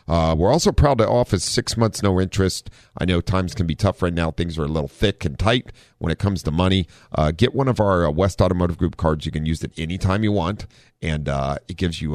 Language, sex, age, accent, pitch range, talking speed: English, male, 40-59, American, 75-105 Hz, 255 wpm